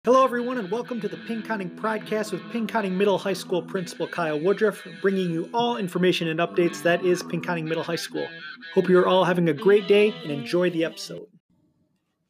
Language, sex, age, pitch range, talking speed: English, male, 30-49, 165-210 Hz, 200 wpm